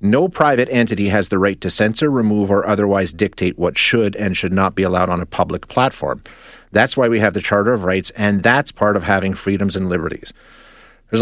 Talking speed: 215 wpm